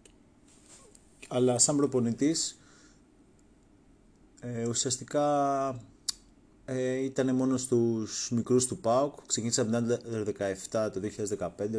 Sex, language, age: male, Greek, 30-49